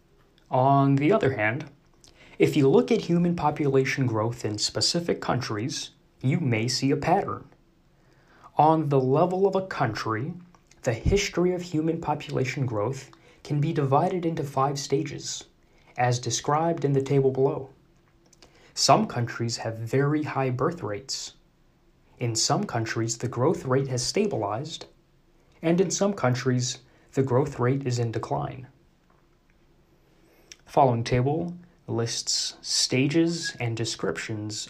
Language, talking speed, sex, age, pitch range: English, 130 wpm, male, 30-49, 120-160 Hz